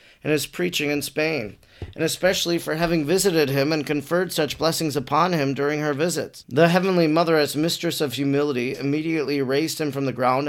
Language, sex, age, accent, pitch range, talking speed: English, male, 40-59, American, 140-165 Hz, 190 wpm